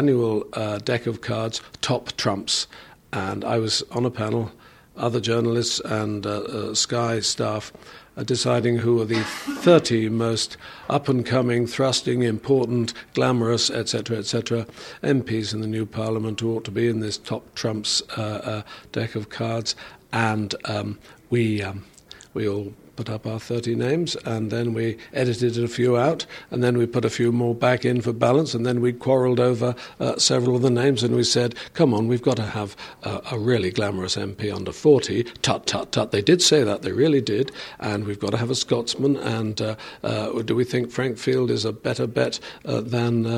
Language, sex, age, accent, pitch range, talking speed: English, male, 50-69, British, 110-125 Hz, 190 wpm